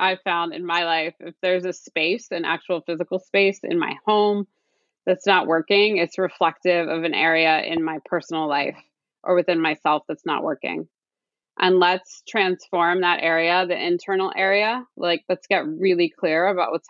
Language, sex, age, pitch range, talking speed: English, female, 20-39, 160-185 Hz, 175 wpm